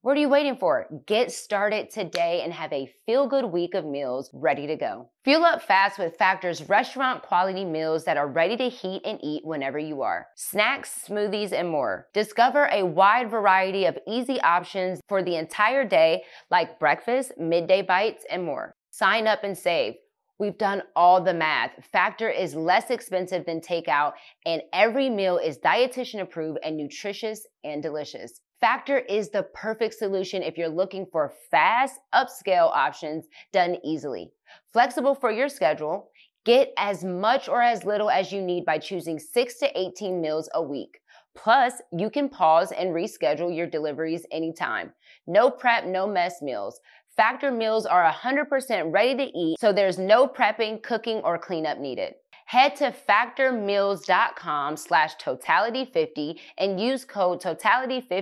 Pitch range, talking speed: 170-235 Hz, 160 wpm